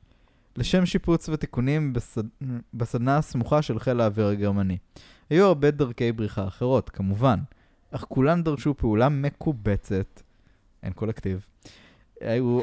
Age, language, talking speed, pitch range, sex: 20-39, Hebrew, 115 wpm, 110-145 Hz, male